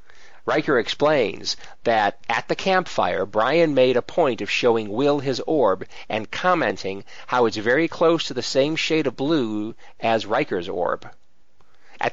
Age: 40-59